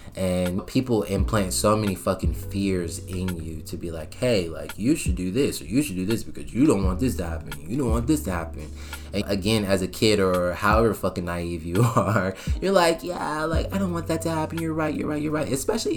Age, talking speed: 20-39, 240 wpm